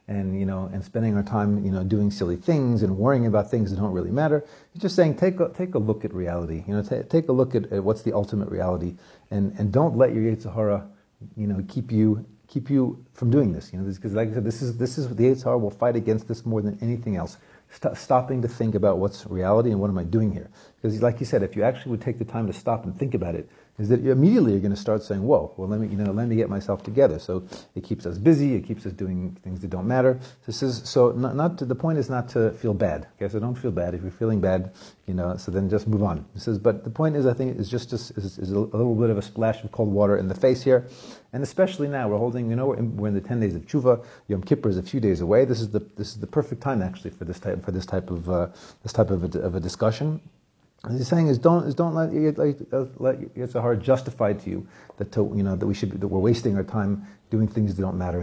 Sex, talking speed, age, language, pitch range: male, 280 wpm, 40-59, English, 100-130 Hz